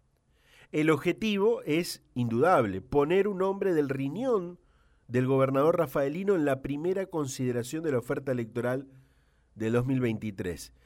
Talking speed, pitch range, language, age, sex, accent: 120 wpm, 120-175 Hz, Spanish, 40-59, male, Argentinian